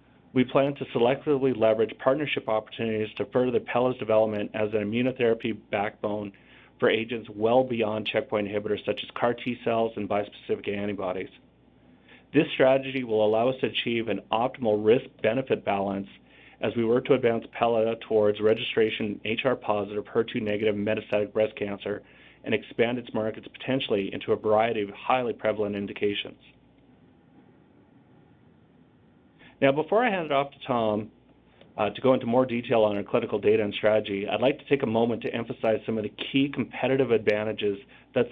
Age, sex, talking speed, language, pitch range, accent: 40-59, male, 160 wpm, English, 105-130 Hz, American